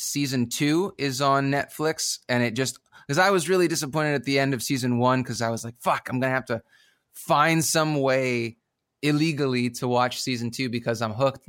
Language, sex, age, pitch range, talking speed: English, male, 20-39, 115-145 Hz, 210 wpm